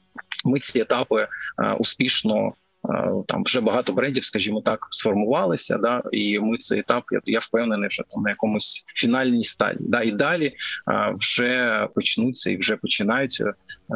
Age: 20-39